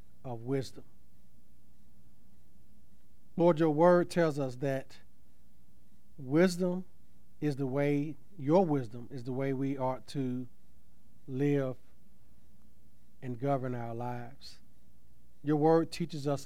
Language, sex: English, male